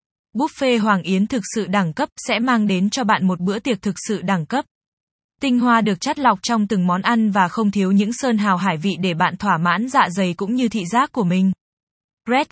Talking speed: 235 wpm